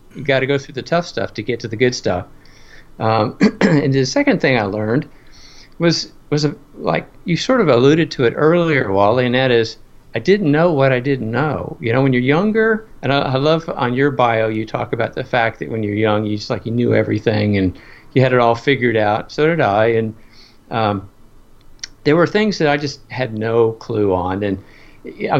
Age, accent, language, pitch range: 50-69, American, English, 115-150 Hz